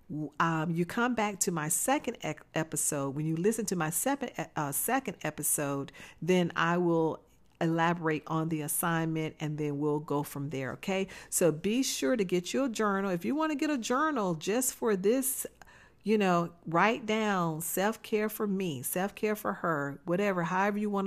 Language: English